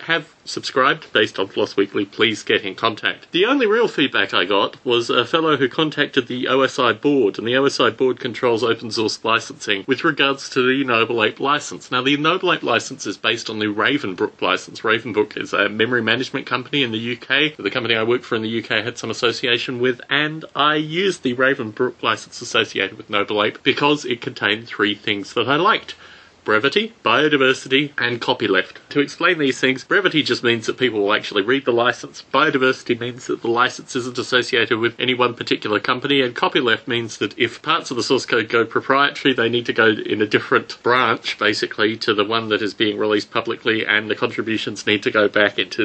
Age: 30-49